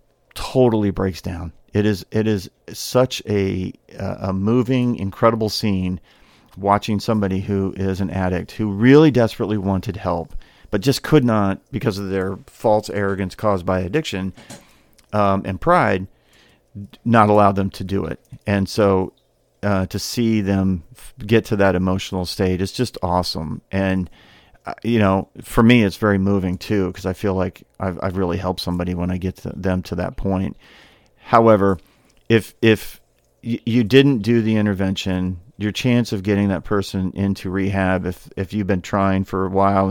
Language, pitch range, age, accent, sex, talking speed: English, 95-110 Hz, 40-59, American, male, 165 wpm